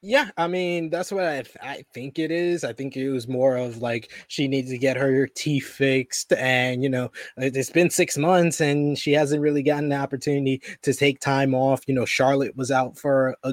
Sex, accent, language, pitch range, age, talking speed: male, American, English, 130-145 Hz, 20-39, 220 wpm